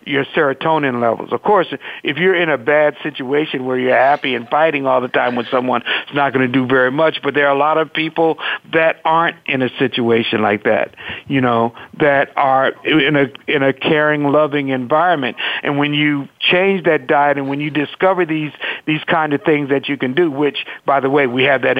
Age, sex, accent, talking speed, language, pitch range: 50-69, male, American, 215 wpm, English, 130-160 Hz